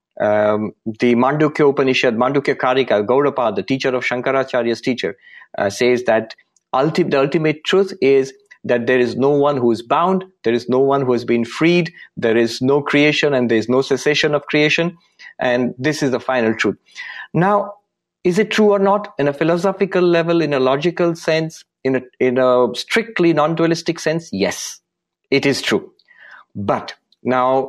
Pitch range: 130-175 Hz